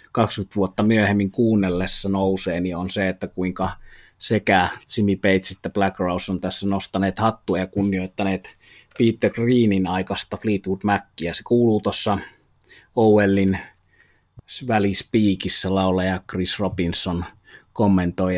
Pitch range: 95-110 Hz